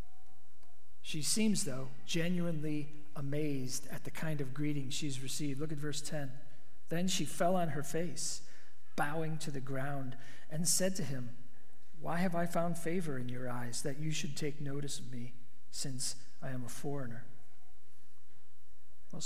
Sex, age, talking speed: male, 40-59, 160 wpm